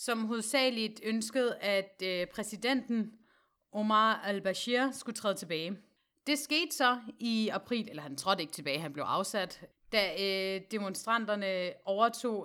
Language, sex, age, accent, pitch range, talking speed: Danish, female, 30-49, native, 190-235 Hz, 135 wpm